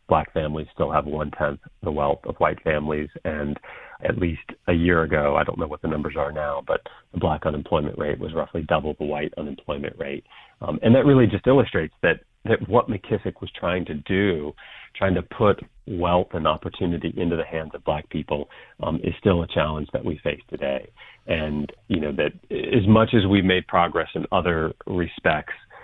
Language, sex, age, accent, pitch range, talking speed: English, male, 40-59, American, 75-95 Hz, 195 wpm